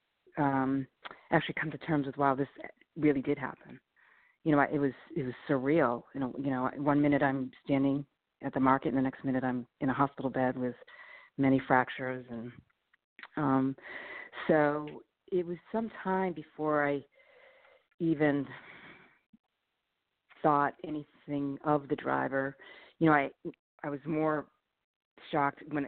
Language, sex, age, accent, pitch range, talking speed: English, female, 40-59, American, 135-150 Hz, 150 wpm